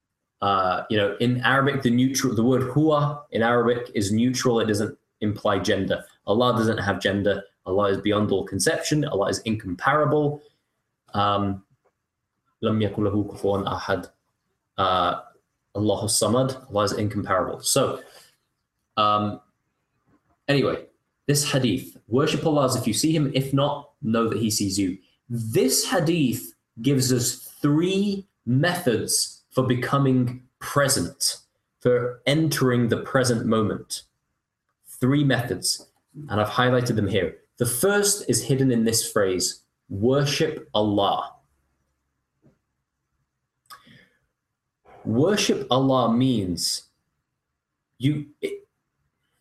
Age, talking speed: 20-39, 110 wpm